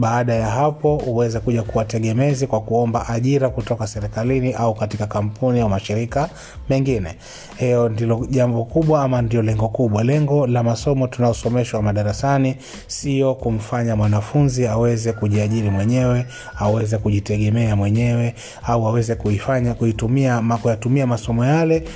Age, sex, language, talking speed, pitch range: 30-49, male, Swahili, 130 wpm, 110-130 Hz